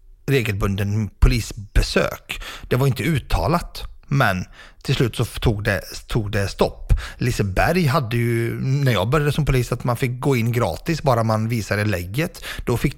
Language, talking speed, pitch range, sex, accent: Swedish, 160 wpm, 110-150 Hz, male, native